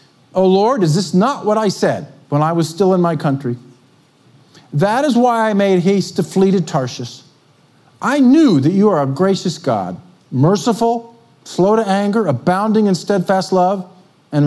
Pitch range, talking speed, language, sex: 140-175 Hz, 175 wpm, English, male